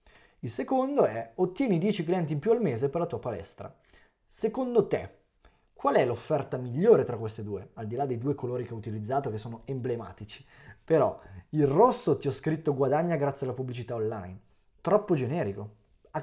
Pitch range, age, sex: 115-170 Hz, 20-39, male